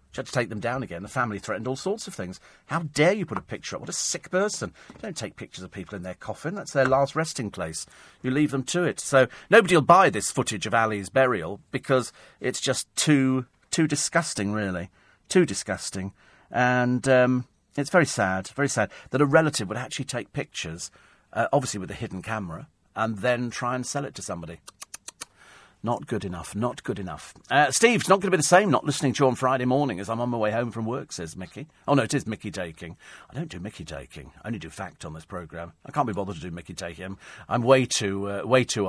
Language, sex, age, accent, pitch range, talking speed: English, male, 40-59, British, 105-145 Hz, 235 wpm